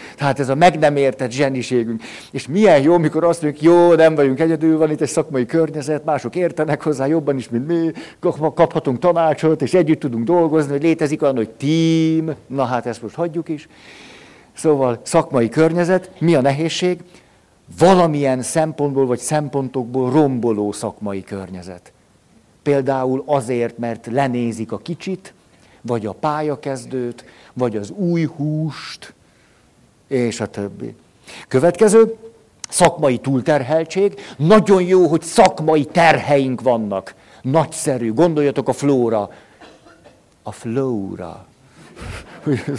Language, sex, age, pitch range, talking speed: Hungarian, male, 60-79, 120-160 Hz, 125 wpm